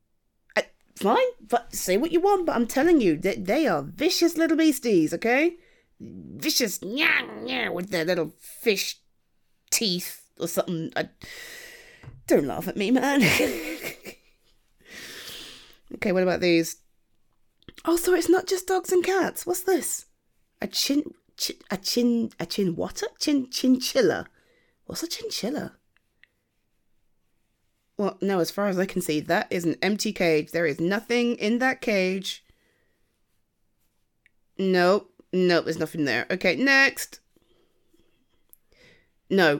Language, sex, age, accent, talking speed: English, female, 30-49, British, 135 wpm